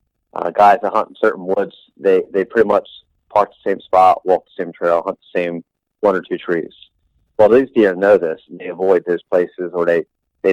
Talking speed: 220 wpm